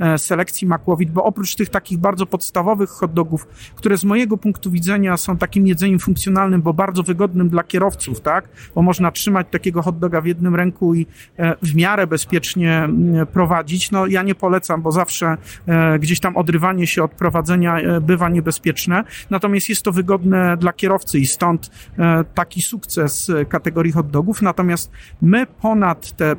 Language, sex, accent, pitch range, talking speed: Polish, male, native, 160-190 Hz, 150 wpm